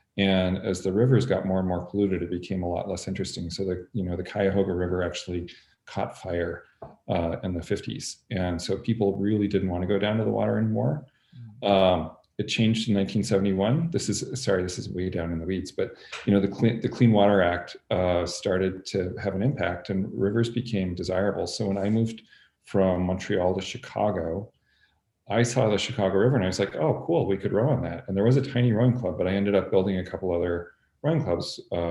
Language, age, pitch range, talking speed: English, 40-59, 90-105 Hz, 220 wpm